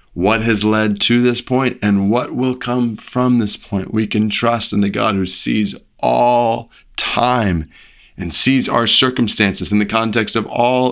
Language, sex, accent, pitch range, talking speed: English, male, American, 95-120 Hz, 175 wpm